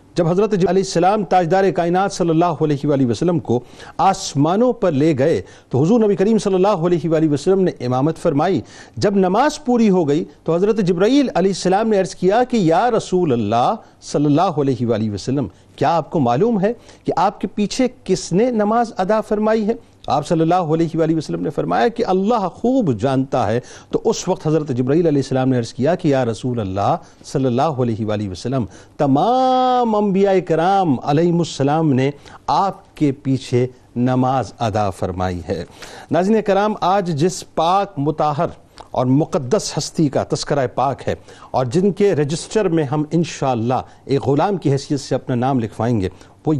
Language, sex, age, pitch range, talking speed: Urdu, male, 50-69, 135-195 Hz, 180 wpm